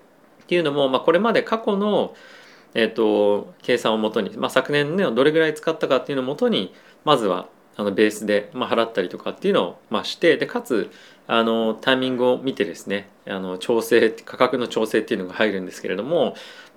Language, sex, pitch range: Japanese, male, 105-160 Hz